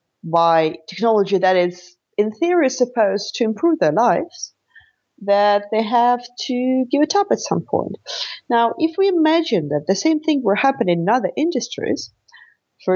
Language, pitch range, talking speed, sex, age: English, 180-230 Hz, 160 wpm, female, 40-59